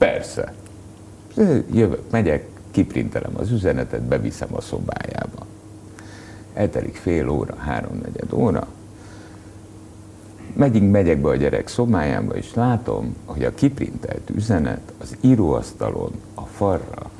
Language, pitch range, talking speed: Hungarian, 75-105 Hz, 105 wpm